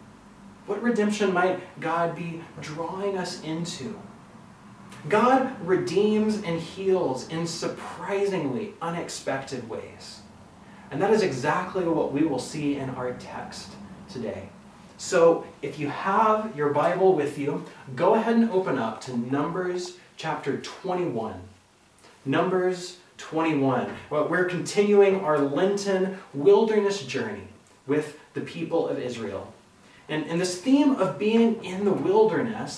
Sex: male